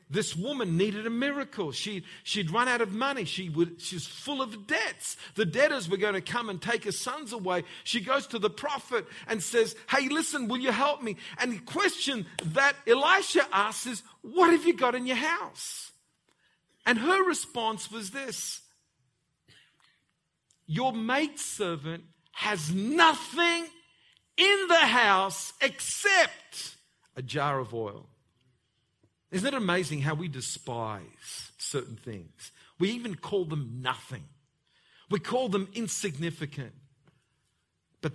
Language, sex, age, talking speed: English, male, 50-69, 140 wpm